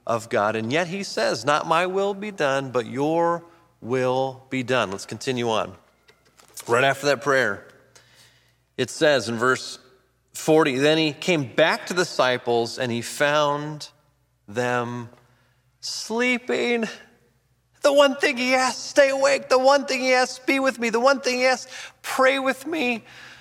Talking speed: 160 wpm